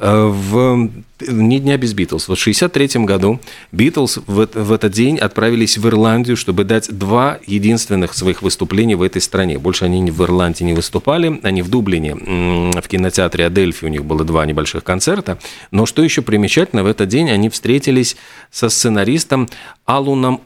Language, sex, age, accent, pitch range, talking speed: Russian, male, 40-59, native, 95-120 Hz, 165 wpm